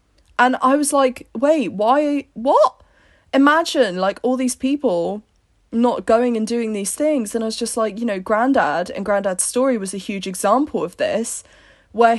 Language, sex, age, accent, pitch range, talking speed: English, female, 20-39, British, 210-275 Hz, 175 wpm